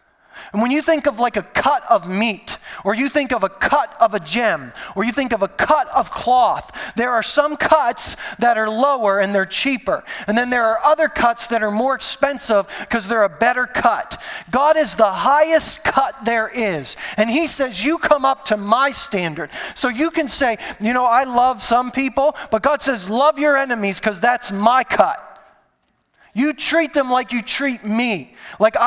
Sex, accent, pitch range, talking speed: male, American, 225-300 Hz, 200 wpm